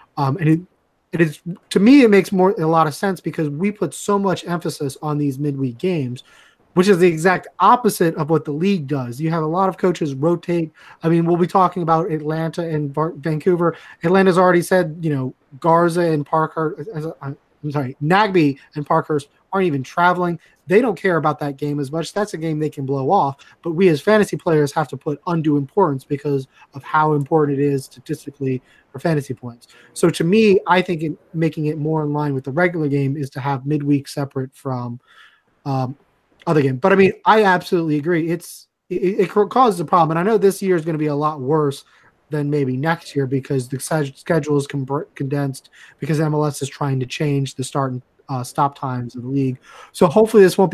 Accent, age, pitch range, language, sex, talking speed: American, 20-39, 145-180 Hz, English, male, 210 wpm